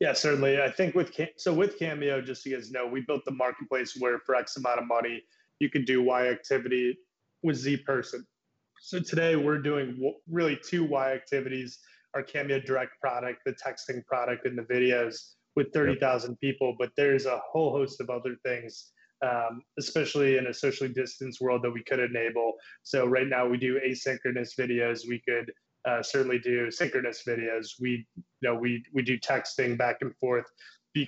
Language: English